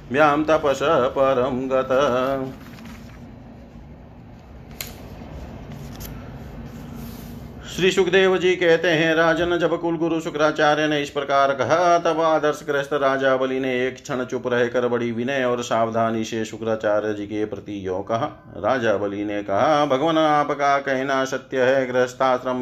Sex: male